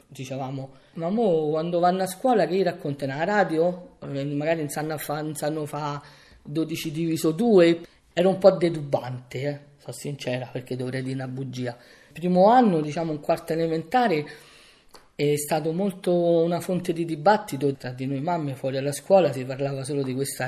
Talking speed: 165 wpm